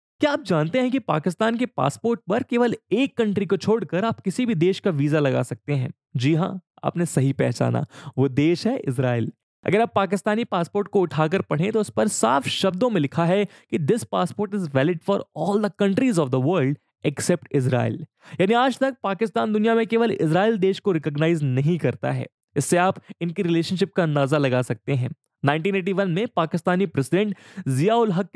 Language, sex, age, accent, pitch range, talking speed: English, male, 20-39, Indian, 145-200 Hz, 135 wpm